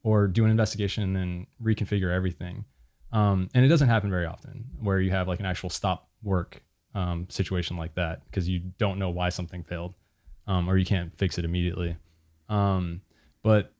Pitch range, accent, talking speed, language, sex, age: 90-110 Hz, American, 185 wpm, English, male, 20-39